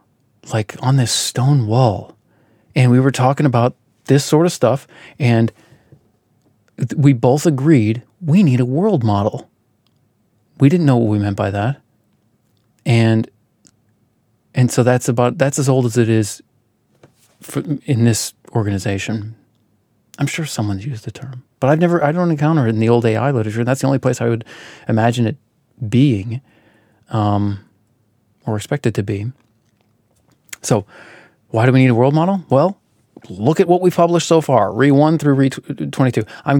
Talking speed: 160 wpm